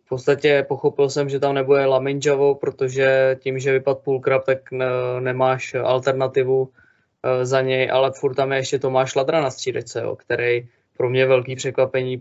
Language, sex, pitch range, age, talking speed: Czech, male, 125-135 Hz, 20-39, 165 wpm